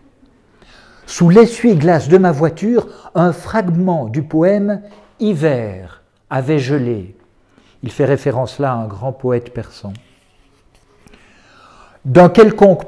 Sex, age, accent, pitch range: male, 60-79, French, 115-180 Hz